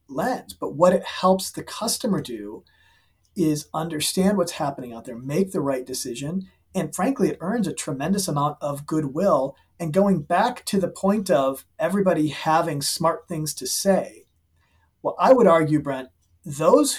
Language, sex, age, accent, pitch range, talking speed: English, male, 40-59, American, 140-185 Hz, 165 wpm